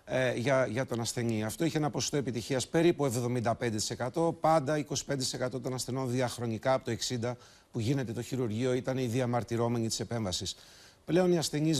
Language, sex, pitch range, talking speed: Greek, male, 115-145 Hz, 160 wpm